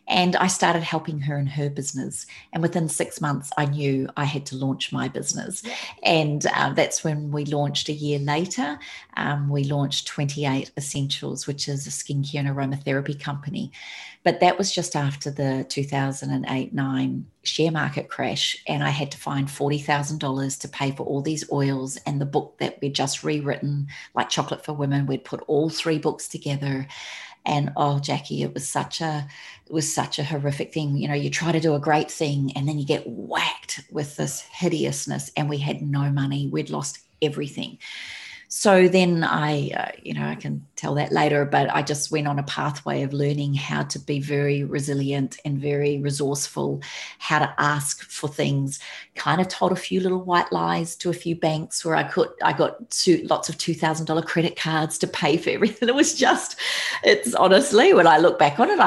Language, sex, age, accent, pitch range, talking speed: English, female, 40-59, Australian, 140-165 Hz, 195 wpm